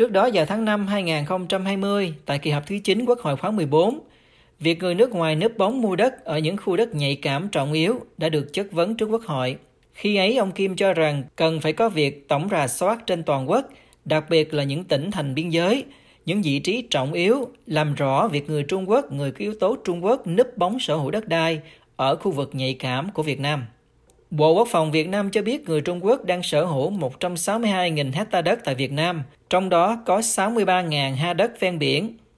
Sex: male